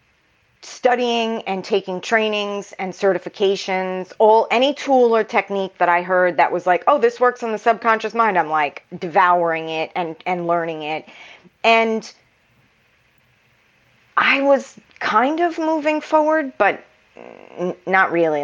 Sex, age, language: female, 30-49, English